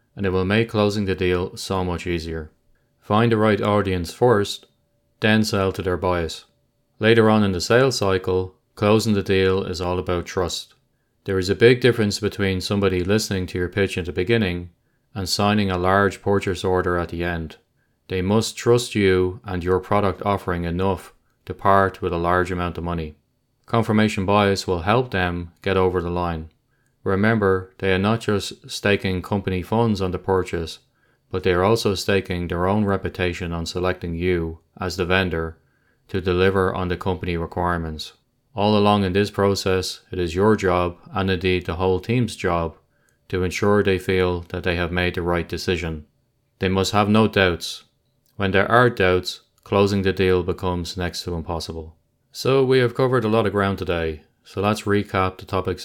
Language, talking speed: English, 180 wpm